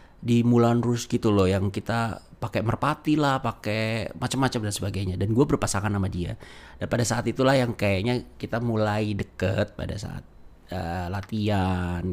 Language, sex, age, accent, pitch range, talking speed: Indonesian, male, 30-49, native, 95-115 Hz, 160 wpm